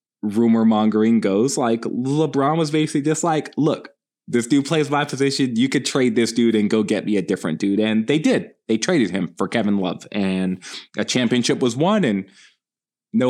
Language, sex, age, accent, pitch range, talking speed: English, male, 20-39, American, 95-130 Hz, 195 wpm